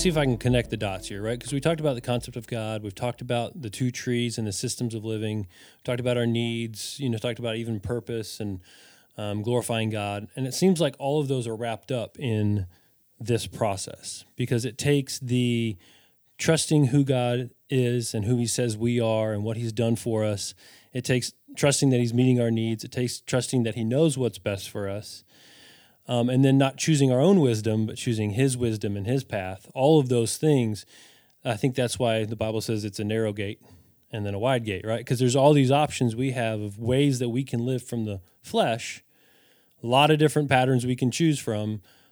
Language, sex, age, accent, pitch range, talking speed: English, male, 20-39, American, 105-125 Hz, 220 wpm